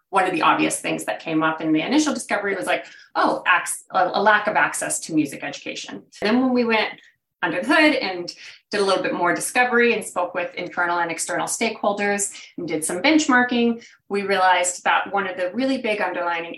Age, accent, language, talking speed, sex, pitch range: 30-49, American, English, 205 wpm, female, 165-205 Hz